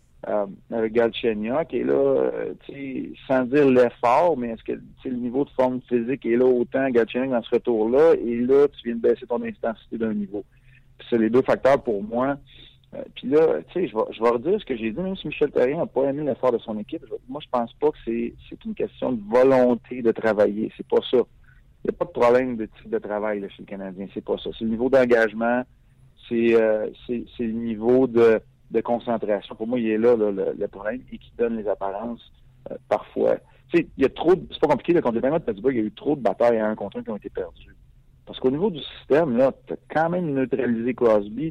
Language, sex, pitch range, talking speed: French, male, 115-140 Hz, 240 wpm